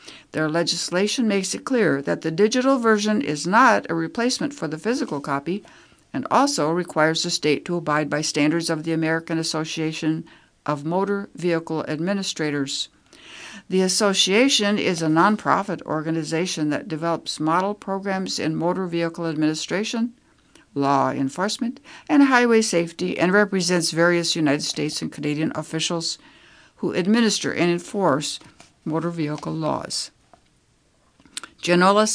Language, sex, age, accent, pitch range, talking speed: English, female, 60-79, American, 155-200 Hz, 130 wpm